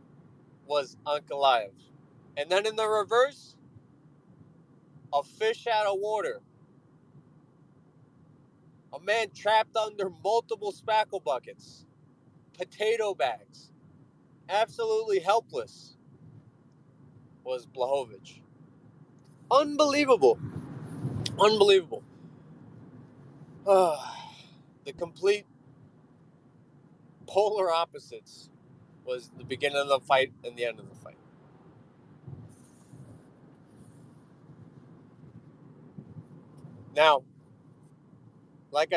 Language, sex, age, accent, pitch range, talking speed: English, male, 30-49, American, 140-185 Hz, 70 wpm